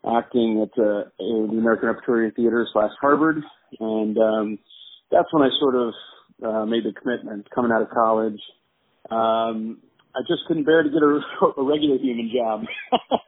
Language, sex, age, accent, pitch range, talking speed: English, male, 40-59, American, 115-140 Hz, 165 wpm